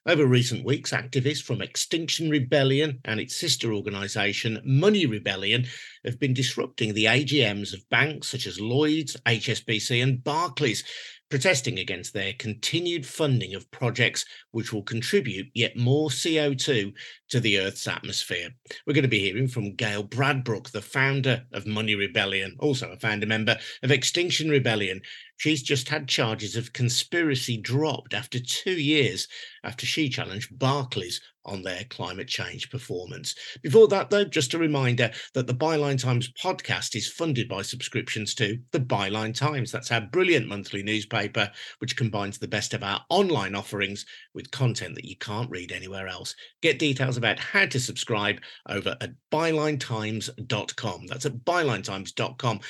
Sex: male